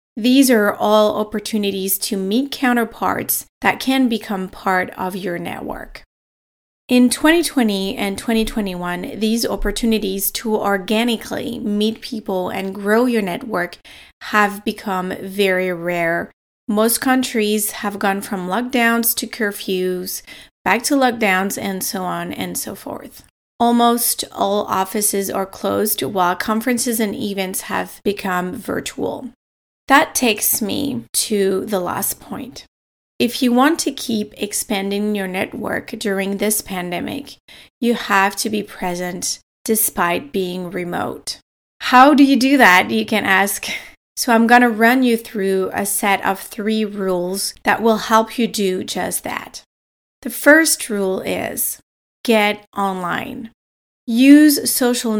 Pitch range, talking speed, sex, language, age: 195-235 Hz, 130 wpm, female, English, 30-49